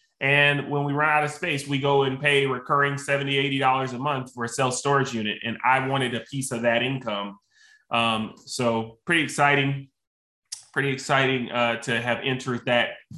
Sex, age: male, 20-39